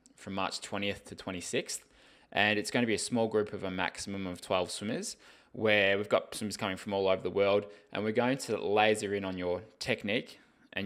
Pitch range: 95-105 Hz